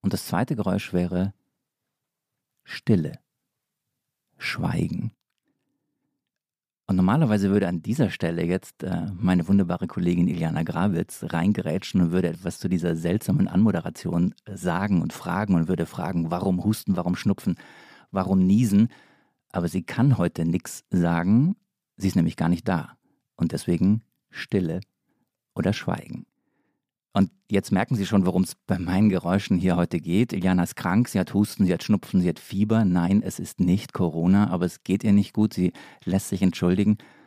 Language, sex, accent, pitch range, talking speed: German, male, German, 90-100 Hz, 155 wpm